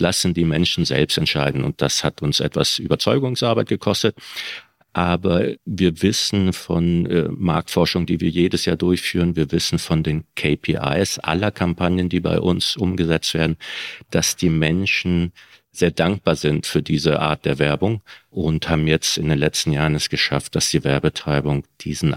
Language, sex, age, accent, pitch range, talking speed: German, male, 50-69, German, 80-90 Hz, 160 wpm